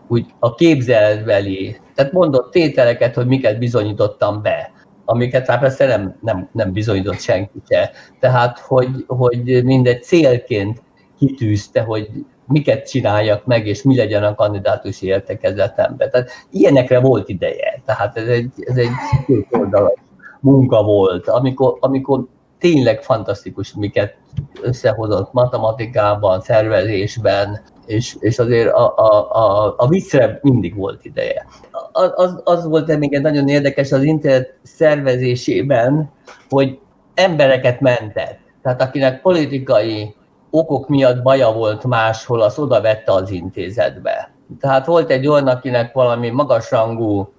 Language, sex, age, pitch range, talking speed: Hungarian, male, 50-69, 110-135 Hz, 120 wpm